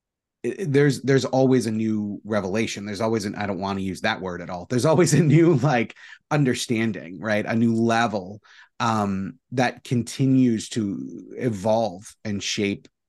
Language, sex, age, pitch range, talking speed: English, male, 30-49, 100-120 Hz, 160 wpm